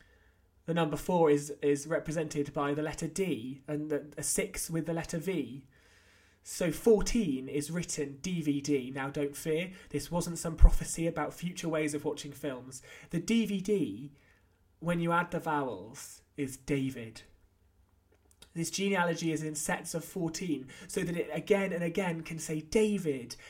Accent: British